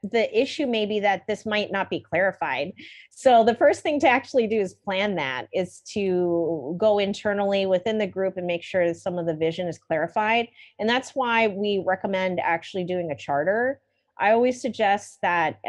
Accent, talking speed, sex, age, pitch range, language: American, 190 wpm, female, 30-49, 180-225 Hz, English